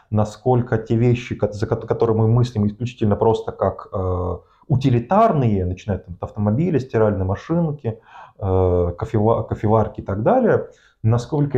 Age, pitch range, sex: 20-39, 100-120 Hz, male